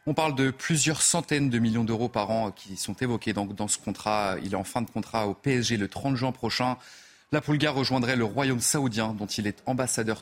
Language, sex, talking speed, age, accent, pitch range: French, male, 225 wpm, 40-59, French, 105-130 Hz